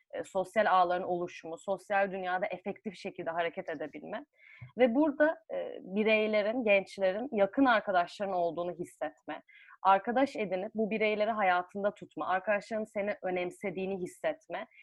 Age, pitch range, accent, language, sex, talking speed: 30-49, 190-270 Hz, native, Turkish, female, 110 wpm